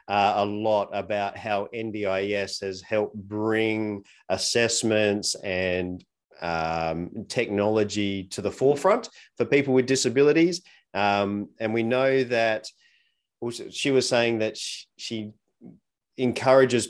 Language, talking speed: English, 115 wpm